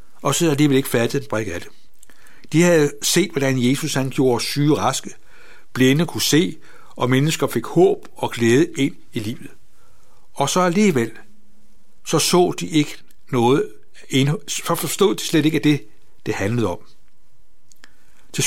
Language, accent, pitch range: Danish, native, 125-160 Hz